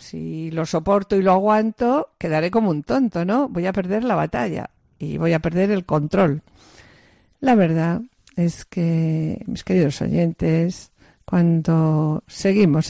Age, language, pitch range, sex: 50-69, Spanish, 165-200 Hz, female